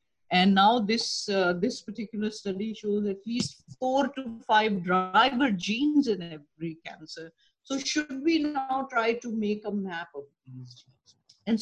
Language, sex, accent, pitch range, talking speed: English, female, Indian, 200-265 Hz, 155 wpm